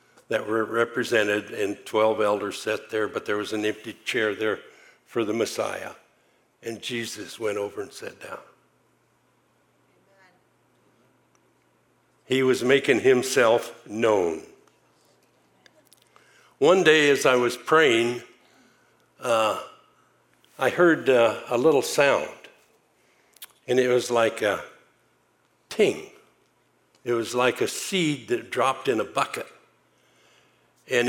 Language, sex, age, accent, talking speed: English, male, 60-79, American, 115 wpm